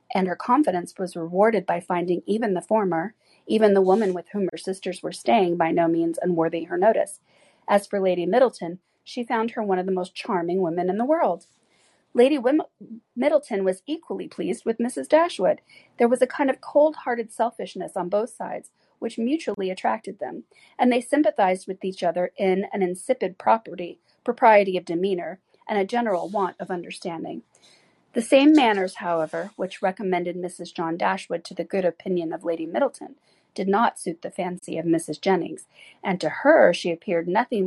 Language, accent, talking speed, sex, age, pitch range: English, American, 180 wpm, female, 40-59, 175-220 Hz